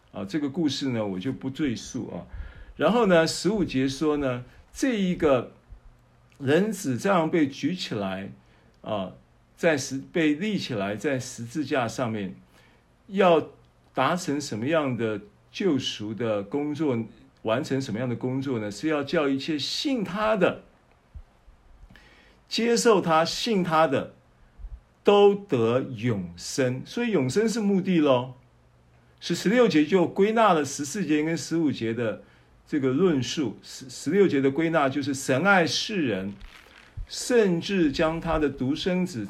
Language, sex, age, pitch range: Chinese, male, 50-69, 115-165 Hz